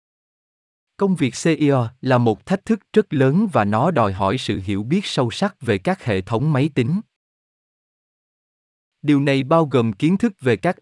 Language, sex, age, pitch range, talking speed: Vietnamese, male, 20-39, 110-160 Hz, 175 wpm